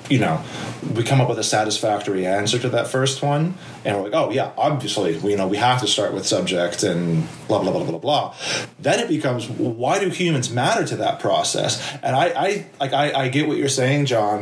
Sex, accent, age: male, American, 30-49